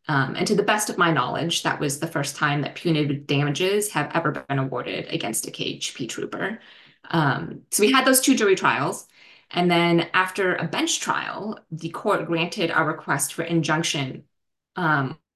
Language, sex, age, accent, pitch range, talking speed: English, female, 20-39, American, 145-180 Hz, 180 wpm